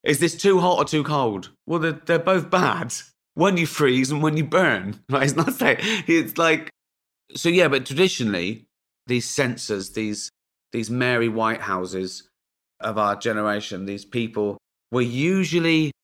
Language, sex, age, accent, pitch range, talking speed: English, male, 30-49, British, 105-155 Hz, 155 wpm